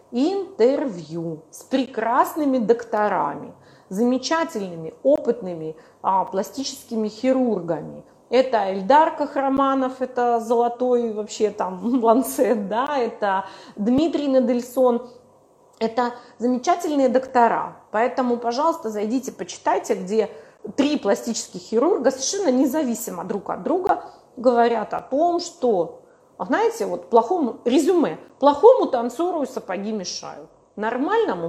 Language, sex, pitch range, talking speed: Russian, female, 215-285 Hz, 95 wpm